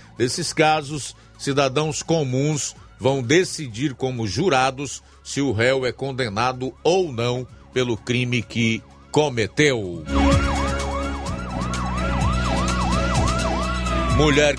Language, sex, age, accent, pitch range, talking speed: Portuguese, male, 50-69, Brazilian, 95-130 Hz, 80 wpm